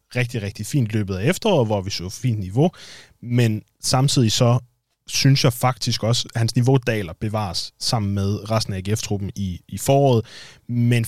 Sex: male